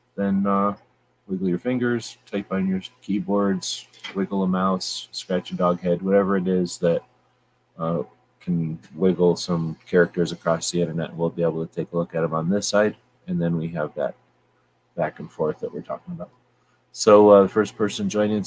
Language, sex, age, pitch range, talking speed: English, male, 30-49, 90-105 Hz, 190 wpm